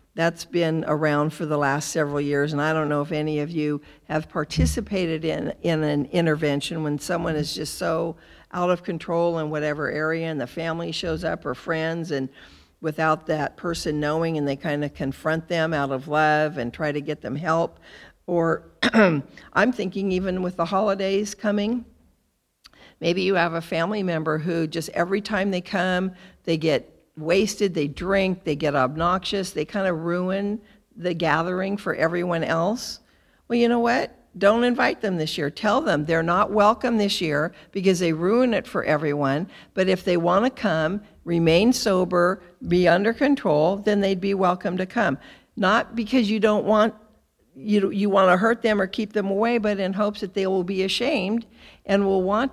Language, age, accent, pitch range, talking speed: English, 50-69, American, 155-205 Hz, 185 wpm